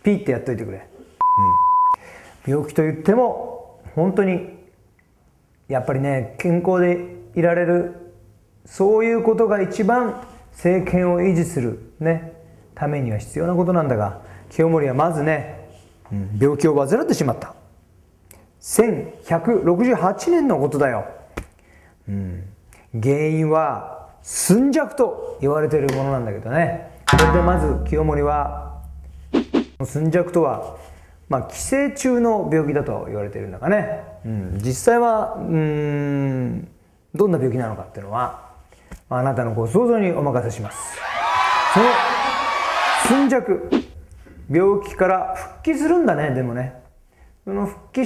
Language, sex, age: Japanese, male, 40-59